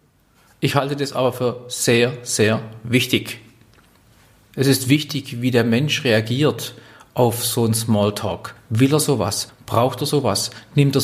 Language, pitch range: German, 115-135 Hz